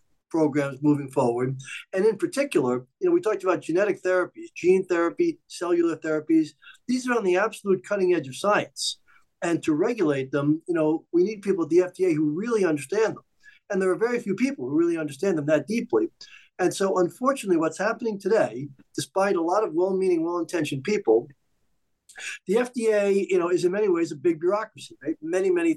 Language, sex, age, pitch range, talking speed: English, male, 50-69, 160-235 Hz, 195 wpm